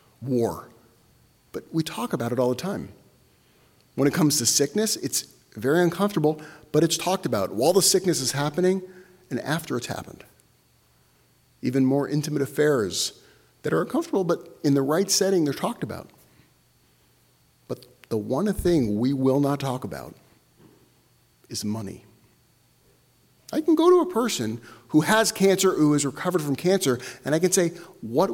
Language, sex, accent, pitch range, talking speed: English, male, American, 130-190 Hz, 160 wpm